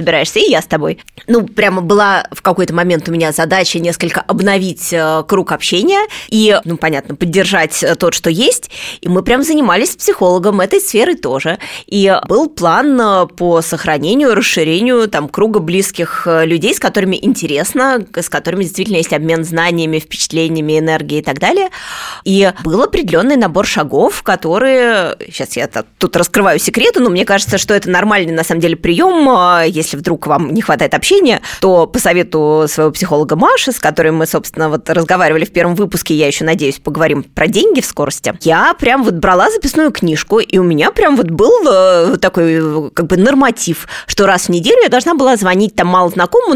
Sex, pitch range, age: female, 165-220 Hz, 20-39